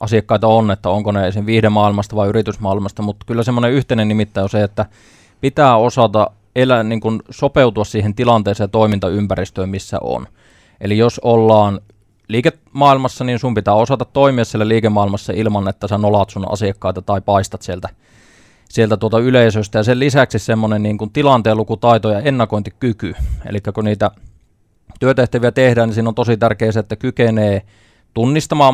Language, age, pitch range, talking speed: Finnish, 20-39, 105-120 Hz, 155 wpm